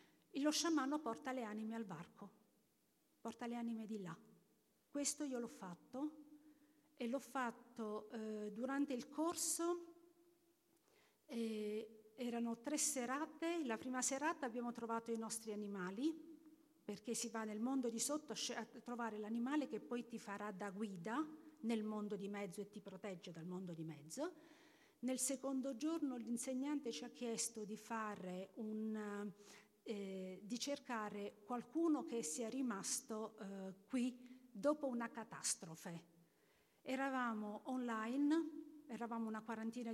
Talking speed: 135 wpm